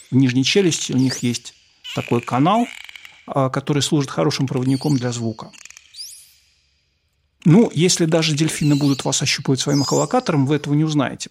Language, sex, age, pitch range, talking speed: Russian, male, 50-69, 125-150 Hz, 145 wpm